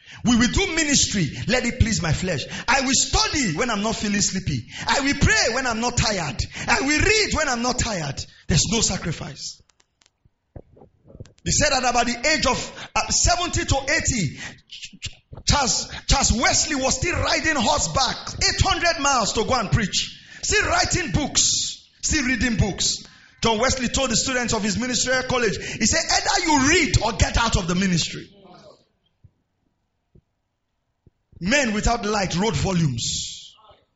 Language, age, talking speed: English, 40-59, 155 wpm